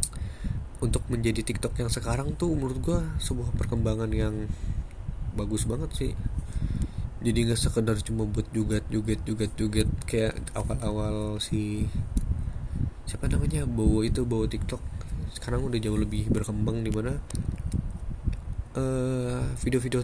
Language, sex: Indonesian, male